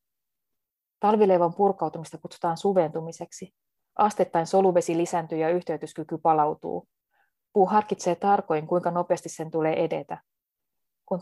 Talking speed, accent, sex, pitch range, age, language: 100 wpm, native, female, 160-185 Hz, 20-39, Finnish